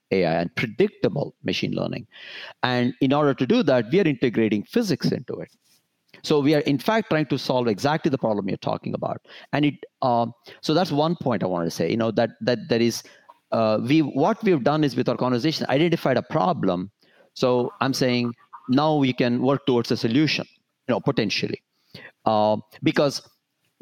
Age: 50-69